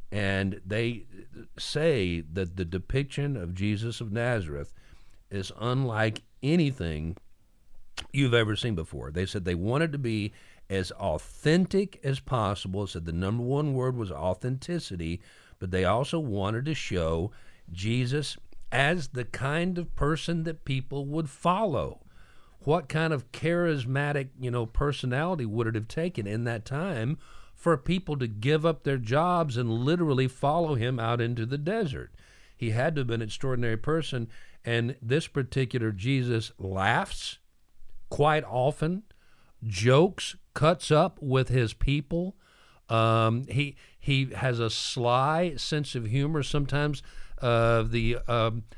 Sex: male